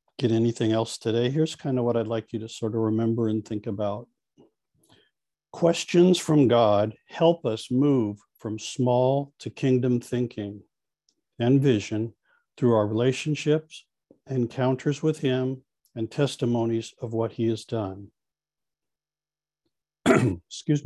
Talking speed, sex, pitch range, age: 130 wpm, male, 115-140 Hz, 50-69